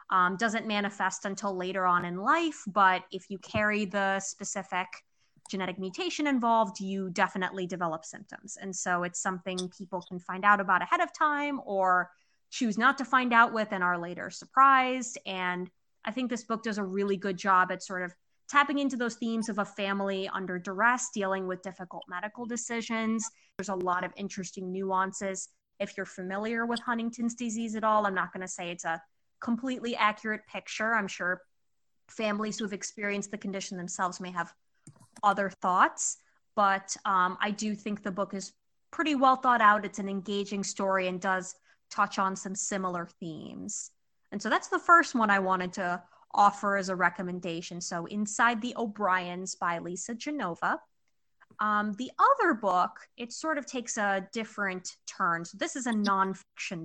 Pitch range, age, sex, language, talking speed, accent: 185-230 Hz, 20-39, female, English, 175 wpm, American